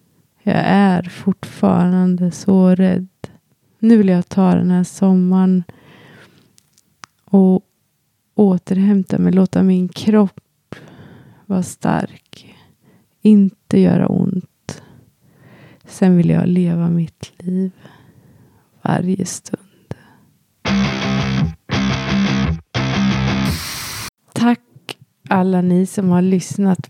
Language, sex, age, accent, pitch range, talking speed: Swedish, female, 20-39, native, 170-200 Hz, 85 wpm